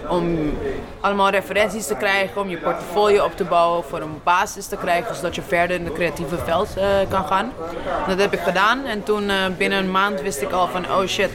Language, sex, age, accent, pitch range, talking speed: English, female, 20-39, Dutch, 170-200 Hz, 220 wpm